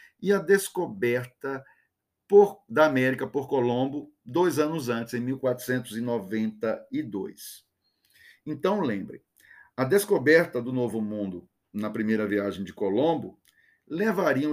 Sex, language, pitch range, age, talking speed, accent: male, Portuguese, 125-180 Hz, 50-69, 105 wpm, Brazilian